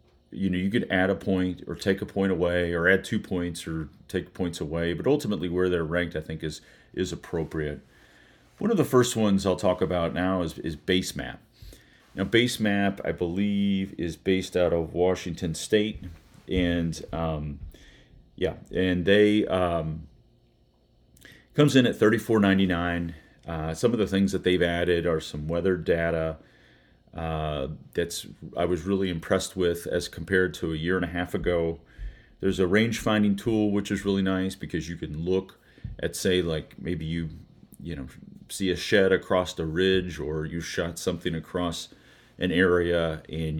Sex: male